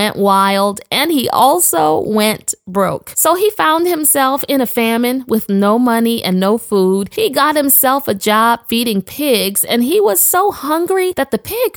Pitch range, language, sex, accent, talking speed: 200-290 Hz, English, female, American, 175 wpm